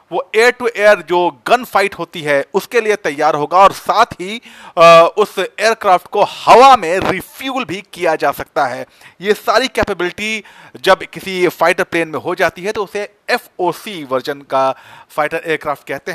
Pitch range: 155-205 Hz